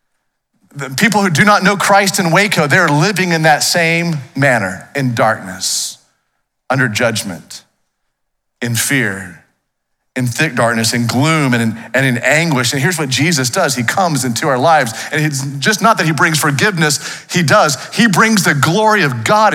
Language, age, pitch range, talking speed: English, 40-59, 140-195 Hz, 170 wpm